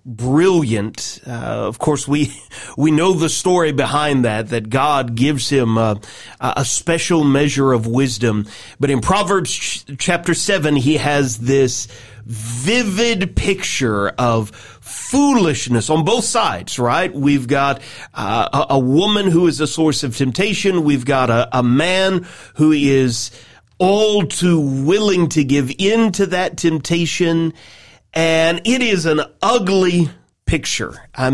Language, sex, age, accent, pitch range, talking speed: English, male, 40-59, American, 130-175 Hz, 135 wpm